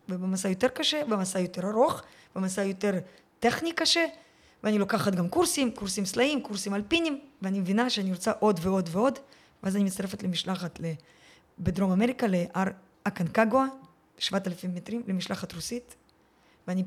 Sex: female